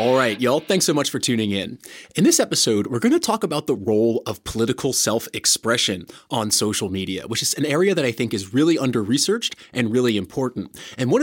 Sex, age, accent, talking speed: male, 20-39, American, 215 wpm